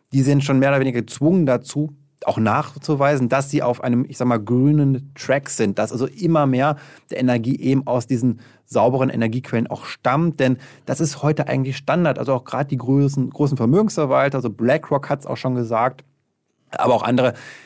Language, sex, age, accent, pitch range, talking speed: German, male, 30-49, German, 125-145 Hz, 185 wpm